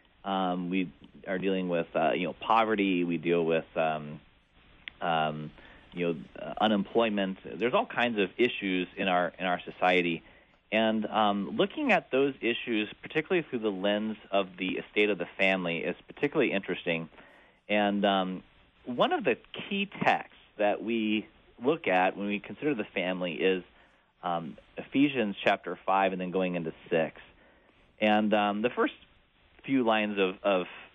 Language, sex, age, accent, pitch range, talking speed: English, male, 30-49, American, 95-120 Hz, 155 wpm